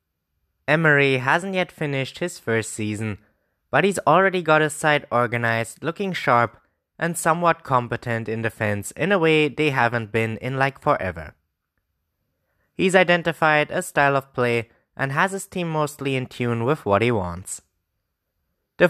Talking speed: 150 wpm